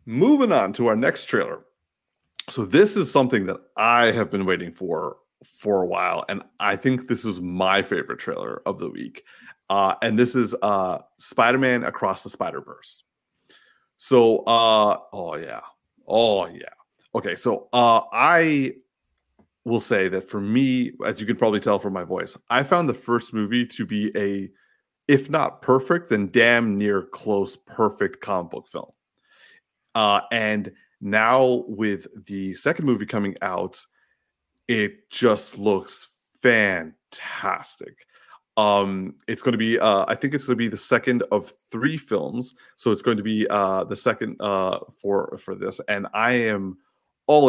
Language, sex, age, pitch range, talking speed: English, male, 30-49, 100-130 Hz, 160 wpm